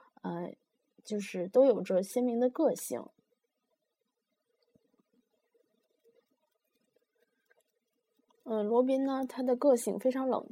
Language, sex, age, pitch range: Chinese, female, 20-39, 185-240 Hz